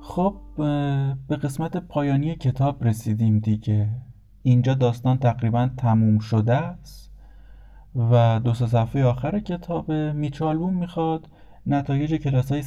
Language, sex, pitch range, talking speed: Persian, male, 120-150 Hz, 105 wpm